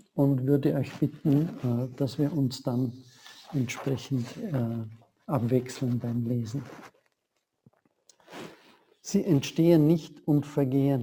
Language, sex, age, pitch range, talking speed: German, male, 60-79, 135-160 Hz, 90 wpm